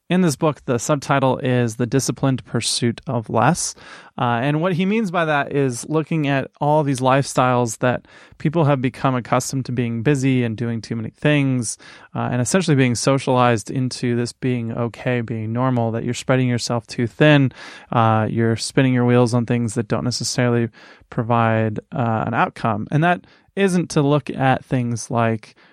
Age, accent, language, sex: 20-39, American, English, male